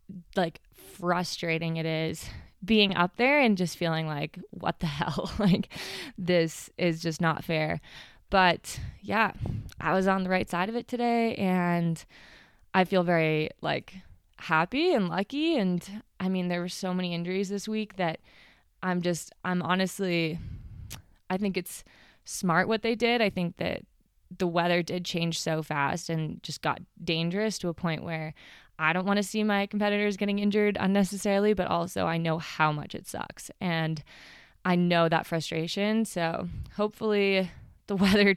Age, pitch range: 20-39, 165-195 Hz